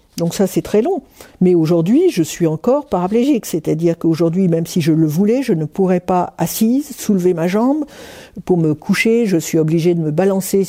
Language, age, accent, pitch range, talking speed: French, 50-69, French, 160-195 Hz, 195 wpm